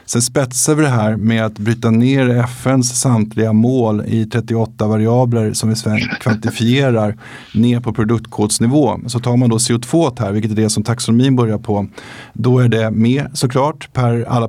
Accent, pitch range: native, 105-125 Hz